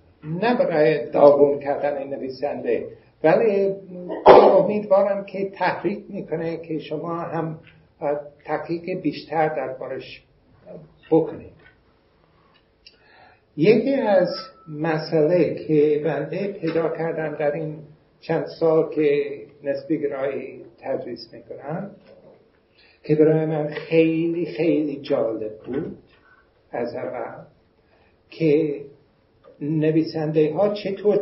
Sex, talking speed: male, 90 wpm